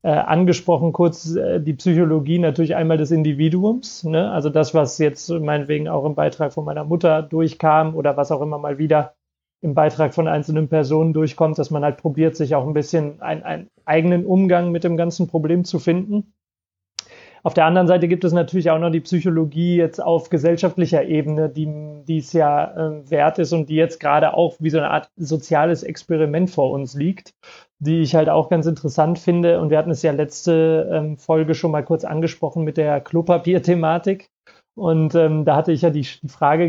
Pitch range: 155-170 Hz